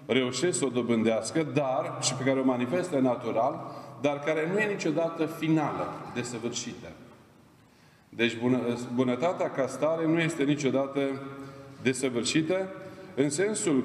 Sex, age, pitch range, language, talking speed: male, 40-59, 130-155 Hz, Romanian, 125 wpm